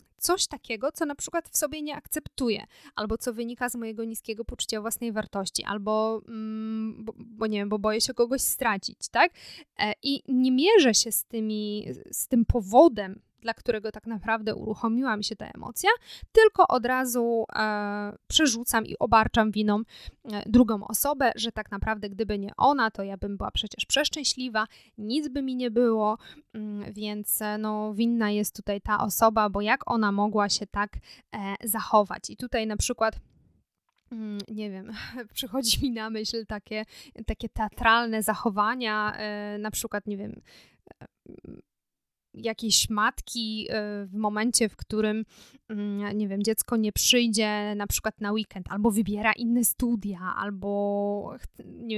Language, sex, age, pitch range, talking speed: Polish, female, 20-39, 210-235 Hz, 150 wpm